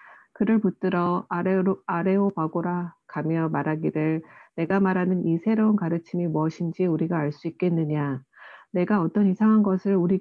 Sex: female